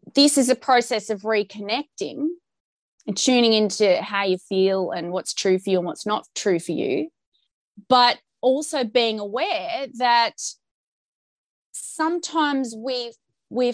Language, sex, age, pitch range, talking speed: English, female, 20-39, 200-265 Hz, 135 wpm